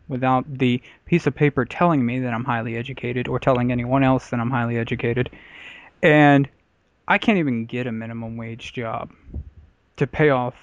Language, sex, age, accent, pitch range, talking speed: English, male, 20-39, American, 120-145 Hz, 175 wpm